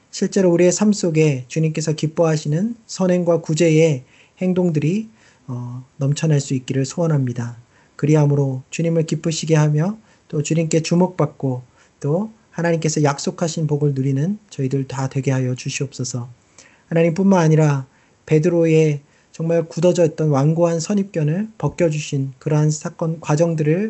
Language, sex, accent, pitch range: Korean, male, native, 140-170 Hz